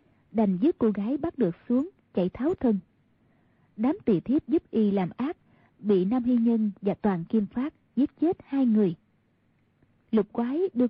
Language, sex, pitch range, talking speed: Vietnamese, female, 195-260 Hz, 175 wpm